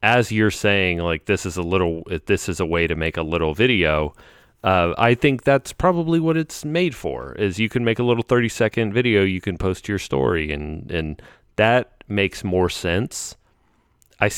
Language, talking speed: English, 195 wpm